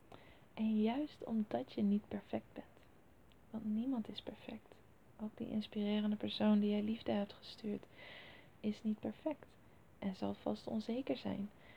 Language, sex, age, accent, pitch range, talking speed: Dutch, female, 20-39, Dutch, 190-220 Hz, 145 wpm